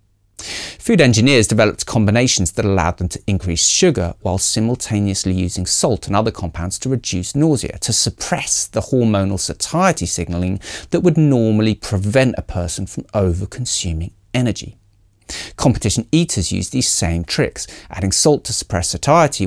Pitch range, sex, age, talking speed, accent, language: 95-130 Hz, male, 40-59, 140 wpm, British, English